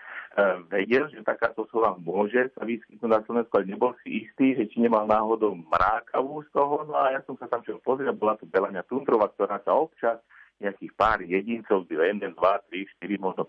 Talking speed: 190 wpm